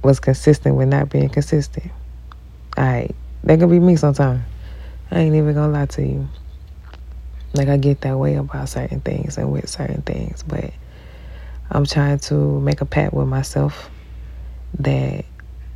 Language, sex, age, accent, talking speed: English, female, 20-39, American, 165 wpm